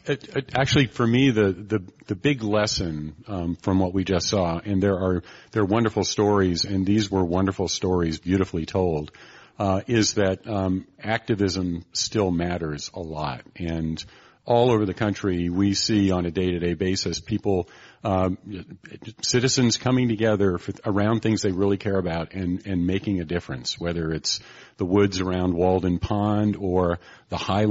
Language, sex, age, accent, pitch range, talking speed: English, male, 40-59, American, 90-110 Hz, 175 wpm